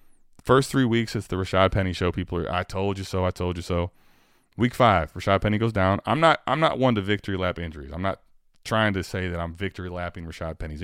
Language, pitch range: English, 95-150 Hz